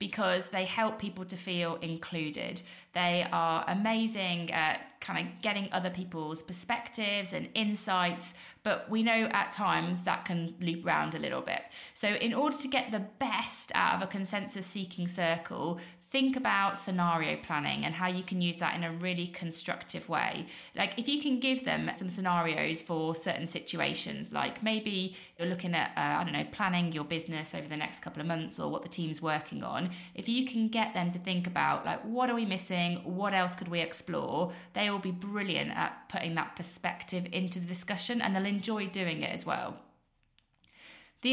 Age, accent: 20-39, British